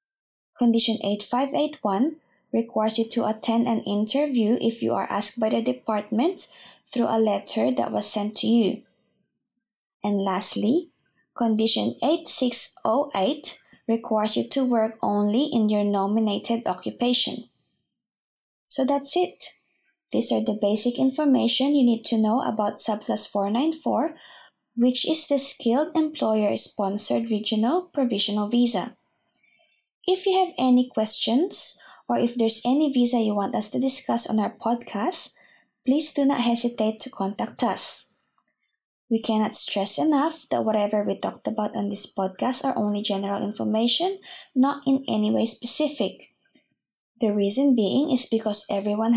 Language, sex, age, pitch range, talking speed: English, female, 20-39, 215-270 Hz, 135 wpm